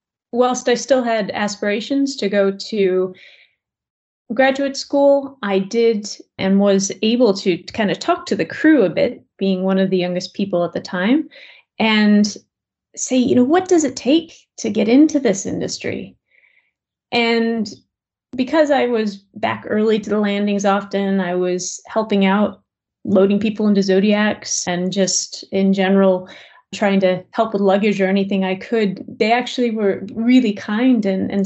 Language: English